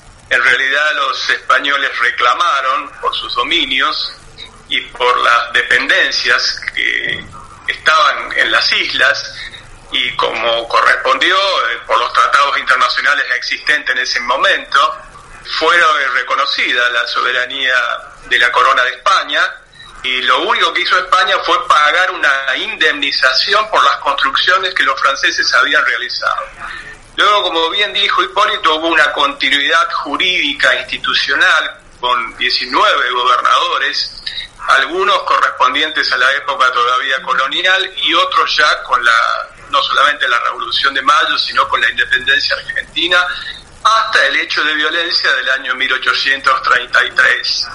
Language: Spanish